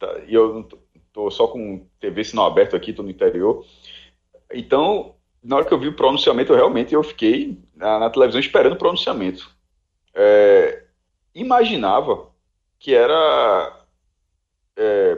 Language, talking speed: Portuguese, 140 wpm